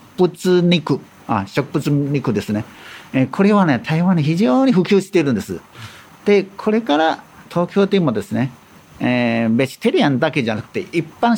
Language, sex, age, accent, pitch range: Japanese, male, 50-69, native, 120-190 Hz